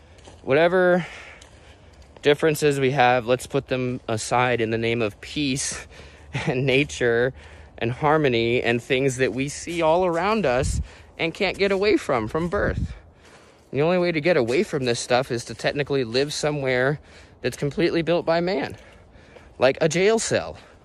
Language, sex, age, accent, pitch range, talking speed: English, male, 20-39, American, 90-145 Hz, 160 wpm